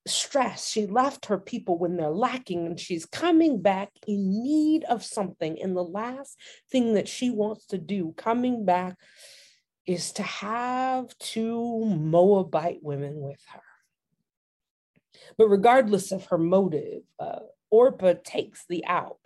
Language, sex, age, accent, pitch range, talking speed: English, female, 40-59, American, 180-230 Hz, 140 wpm